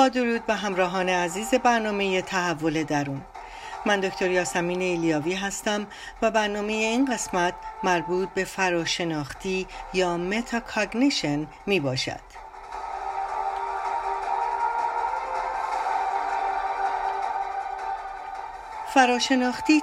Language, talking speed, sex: Persian, 75 wpm, female